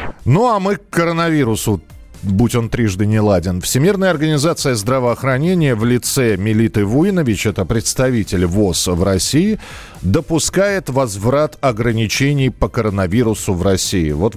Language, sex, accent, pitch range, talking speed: Russian, male, native, 95-135 Hz, 125 wpm